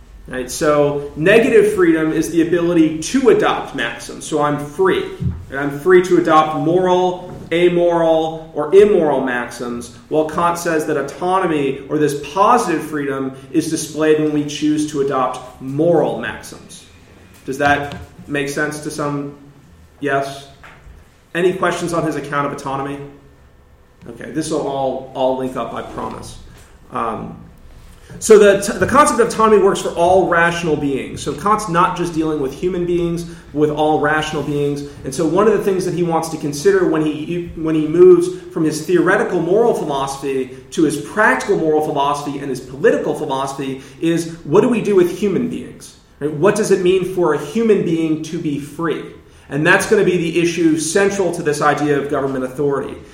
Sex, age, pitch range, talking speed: male, 30-49, 145-180 Hz, 170 wpm